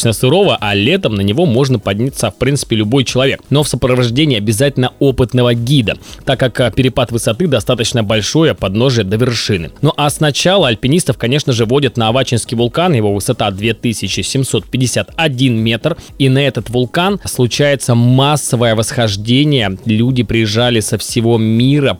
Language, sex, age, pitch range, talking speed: Russian, male, 20-39, 105-130 Hz, 145 wpm